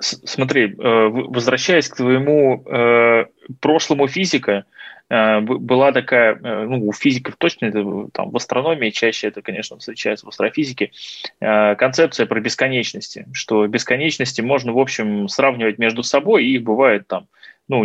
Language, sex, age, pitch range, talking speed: Russian, male, 20-39, 105-140 Hz, 145 wpm